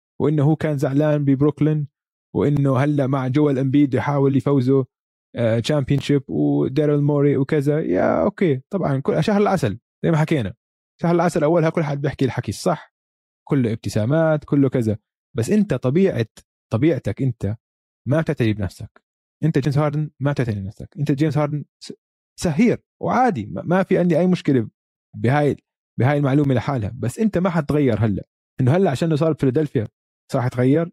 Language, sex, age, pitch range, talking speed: Arabic, male, 20-39, 125-160 Hz, 150 wpm